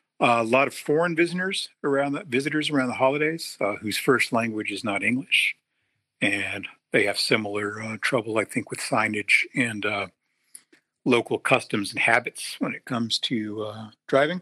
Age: 50-69